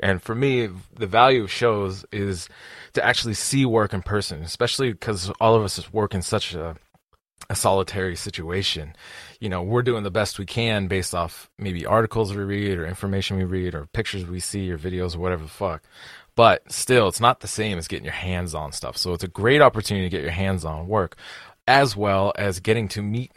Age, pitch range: 20-39, 90-110 Hz